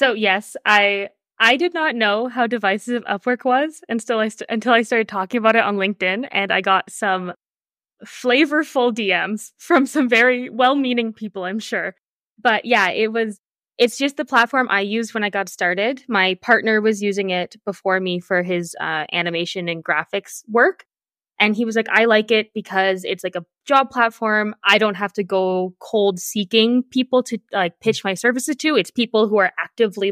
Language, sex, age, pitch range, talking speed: English, female, 20-39, 185-235 Hz, 190 wpm